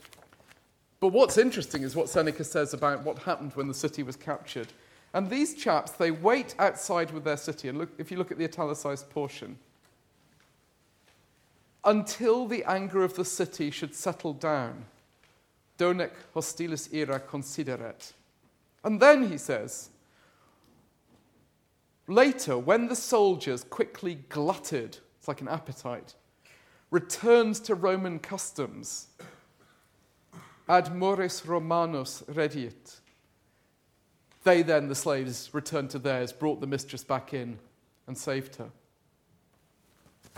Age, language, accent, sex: 40-59, English, British, male